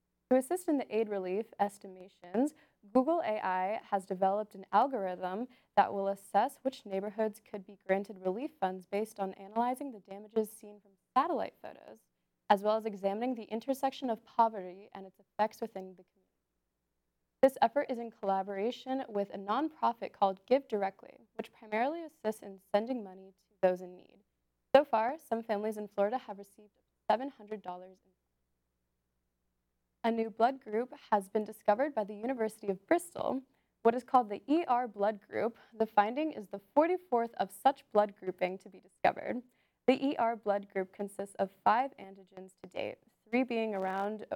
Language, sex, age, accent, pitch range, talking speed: English, female, 20-39, American, 195-235 Hz, 165 wpm